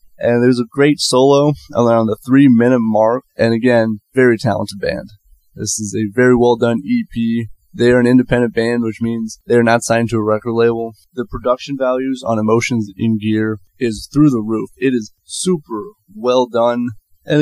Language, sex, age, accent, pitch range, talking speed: English, male, 20-39, American, 110-130 Hz, 175 wpm